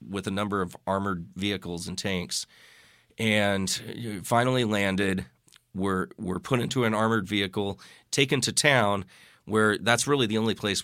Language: English